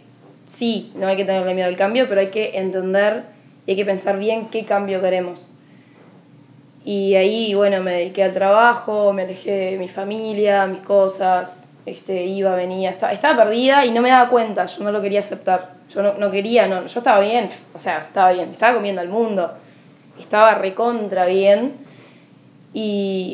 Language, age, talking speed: Spanish, 10-29, 180 wpm